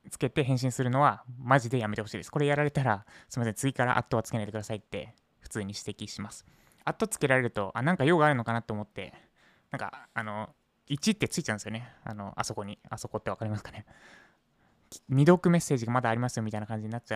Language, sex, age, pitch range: Japanese, male, 20-39, 110-155 Hz